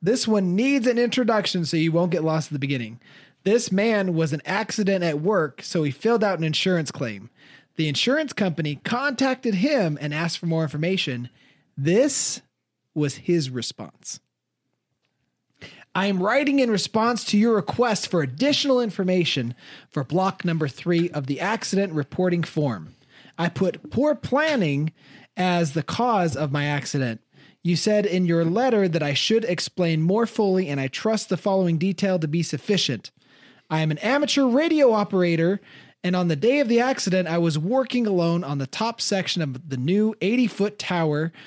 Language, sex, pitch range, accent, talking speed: English, male, 150-215 Hz, American, 170 wpm